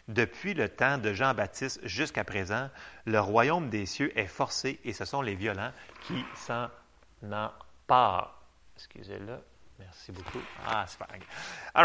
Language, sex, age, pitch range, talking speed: French, male, 30-49, 110-155 Hz, 150 wpm